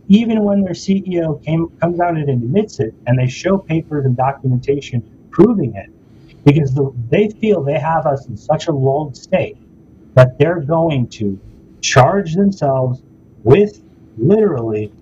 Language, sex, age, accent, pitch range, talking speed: English, male, 40-59, American, 120-155 Hz, 150 wpm